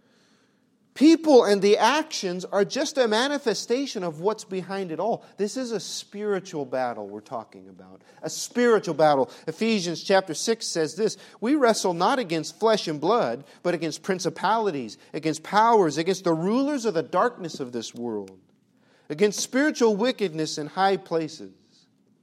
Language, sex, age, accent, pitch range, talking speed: English, male, 40-59, American, 175-240 Hz, 150 wpm